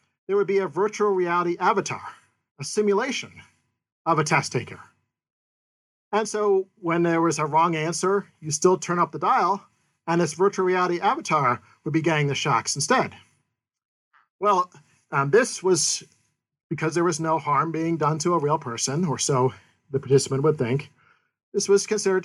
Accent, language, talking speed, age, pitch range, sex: American, English, 165 wpm, 40-59, 140-185 Hz, male